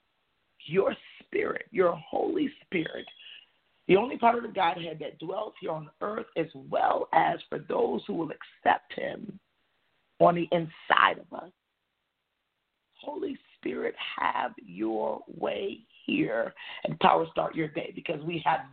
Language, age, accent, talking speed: English, 50-69, American, 140 wpm